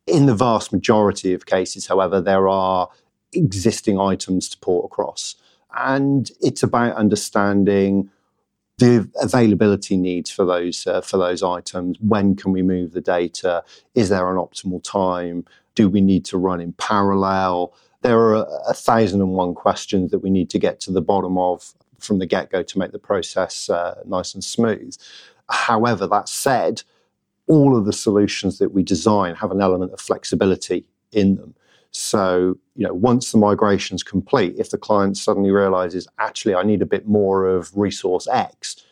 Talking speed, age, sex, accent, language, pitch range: 170 wpm, 40-59, male, British, English, 90-105 Hz